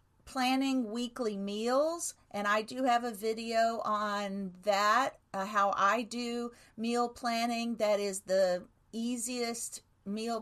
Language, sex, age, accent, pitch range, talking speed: English, female, 50-69, American, 205-245 Hz, 125 wpm